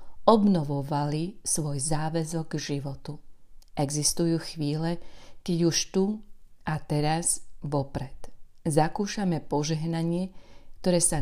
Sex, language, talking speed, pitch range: female, Slovak, 90 wpm, 145-175 Hz